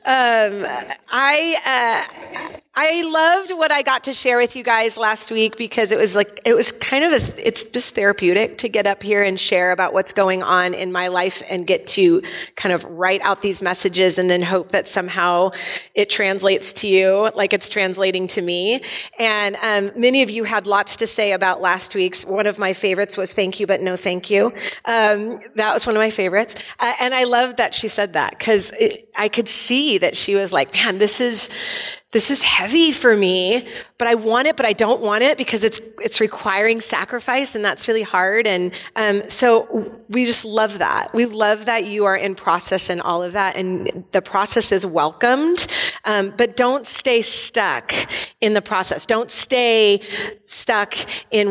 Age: 30-49